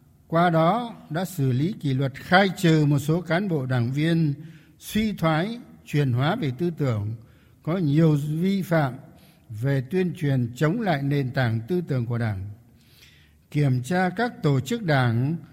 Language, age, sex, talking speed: Vietnamese, 60-79, male, 165 wpm